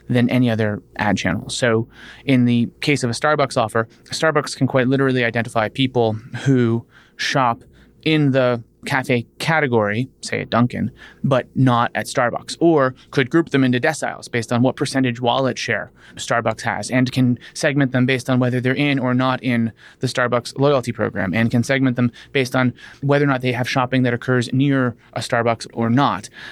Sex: male